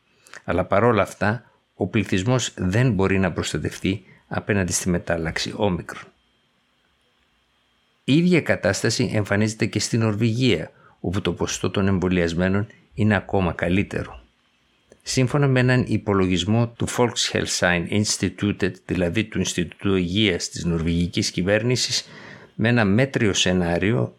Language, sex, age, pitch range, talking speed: Greek, male, 60-79, 90-110 Hz, 115 wpm